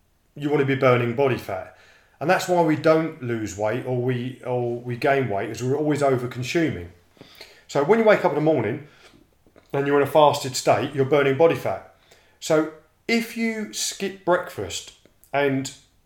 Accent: British